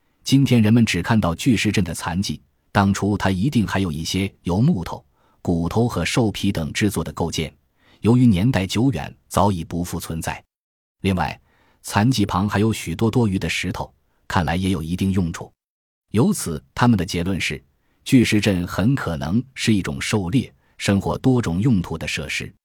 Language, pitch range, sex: Chinese, 85-110 Hz, male